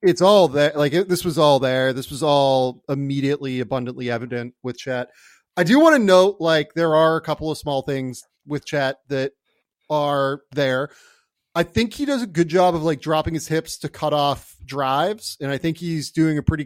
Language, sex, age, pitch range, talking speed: English, male, 30-49, 140-170 Hz, 205 wpm